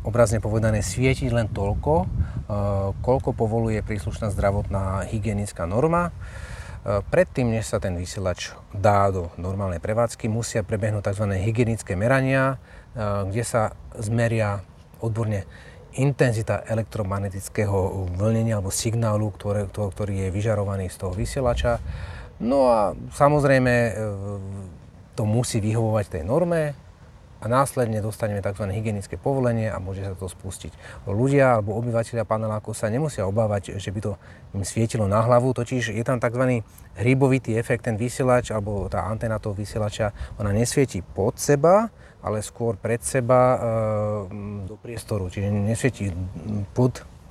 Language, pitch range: Slovak, 100-120 Hz